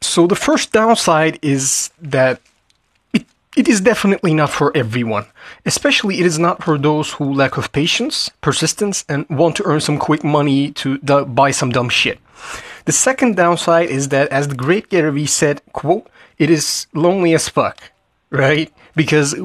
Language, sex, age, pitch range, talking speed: Turkish, male, 30-49, 135-185 Hz, 165 wpm